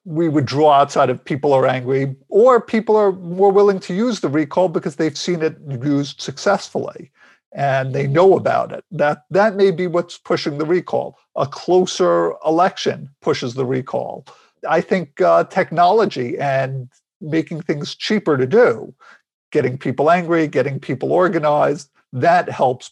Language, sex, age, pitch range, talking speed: English, male, 50-69, 140-185 Hz, 155 wpm